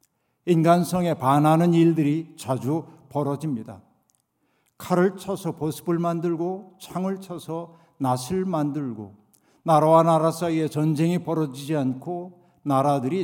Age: 60-79